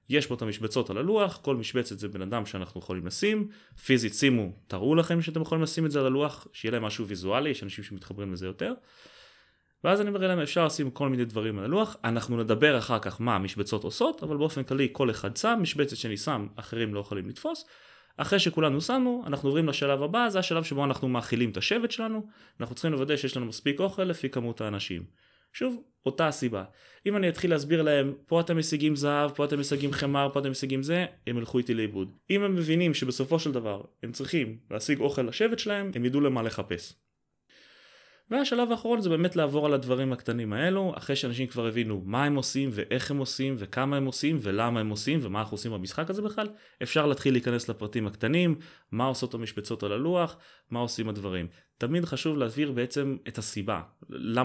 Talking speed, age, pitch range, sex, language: 170 wpm, 20-39, 115-160 Hz, male, Hebrew